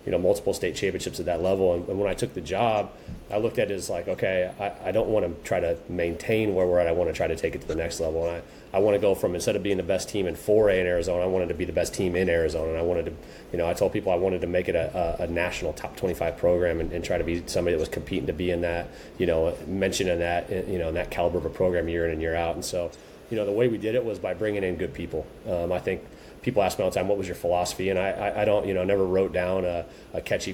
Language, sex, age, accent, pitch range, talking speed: English, male, 30-49, American, 85-95 Hz, 315 wpm